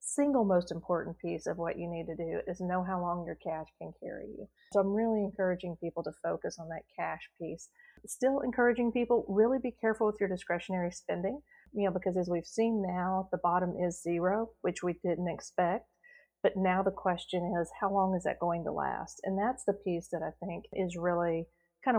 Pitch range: 170-195 Hz